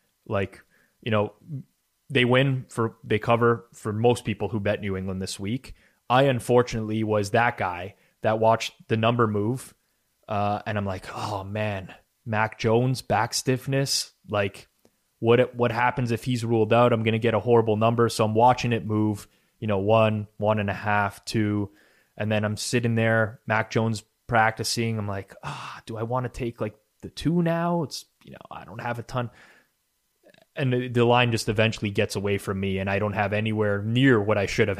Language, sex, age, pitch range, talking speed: English, male, 20-39, 105-120 Hz, 195 wpm